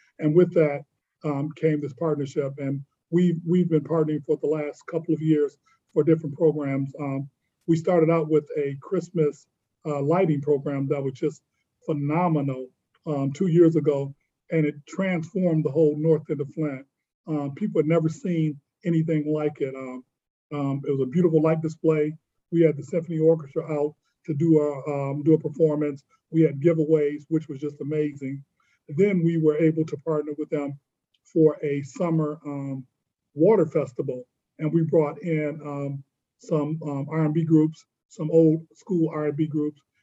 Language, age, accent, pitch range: English, 40-59, American, 145-160 Hz